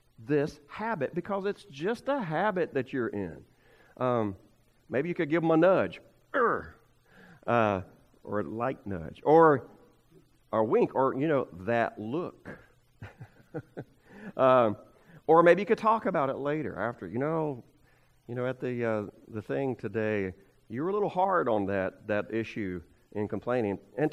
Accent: American